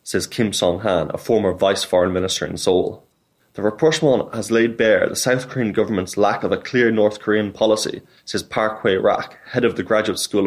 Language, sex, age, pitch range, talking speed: English, male, 20-39, 100-125 Hz, 200 wpm